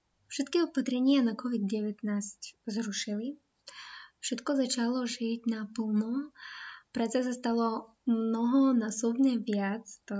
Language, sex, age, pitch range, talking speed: Slovak, female, 10-29, 215-250 Hz, 90 wpm